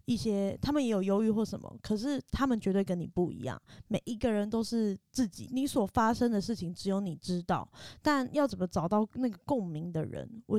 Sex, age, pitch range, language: female, 20-39, 180-235 Hz, Chinese